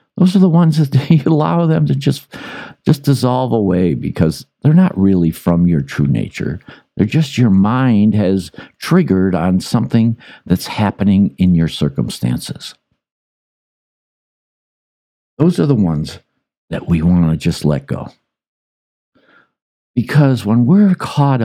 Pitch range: 85-125 Hz